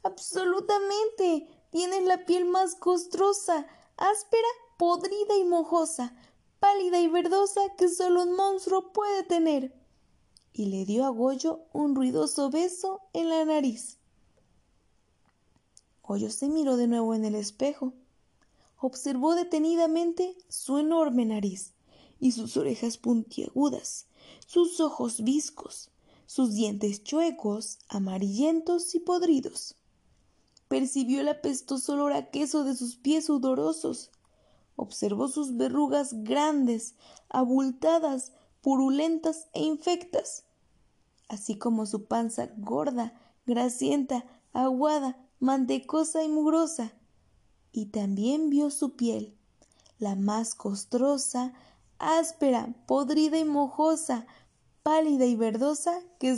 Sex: female